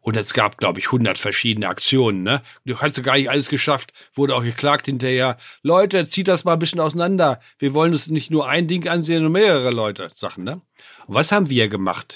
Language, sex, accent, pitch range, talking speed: German, male, German, 110-150 Hz, 210 wpm